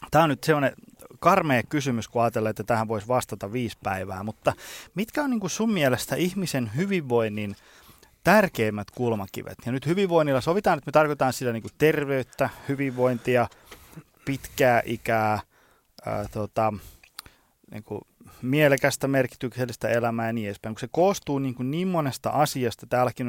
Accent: native